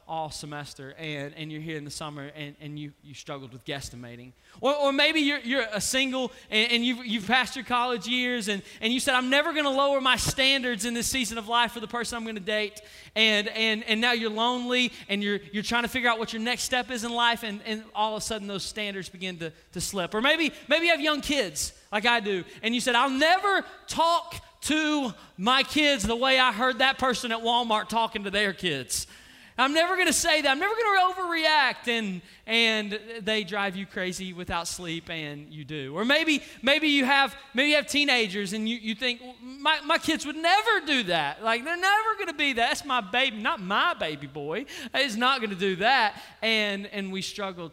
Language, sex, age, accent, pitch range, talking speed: English, male, 20-39, American, 165-255 Hz, 235 wpm